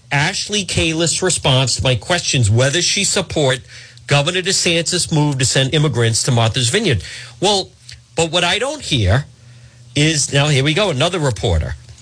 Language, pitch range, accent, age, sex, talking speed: English, 120-160 Hz, American, 50-69, male, 155 wpm